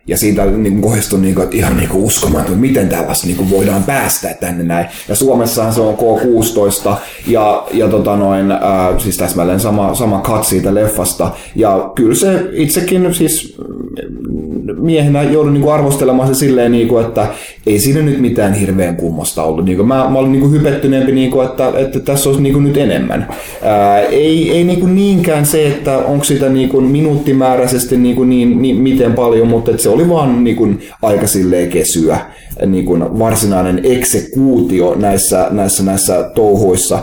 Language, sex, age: Finnish, male, 20-39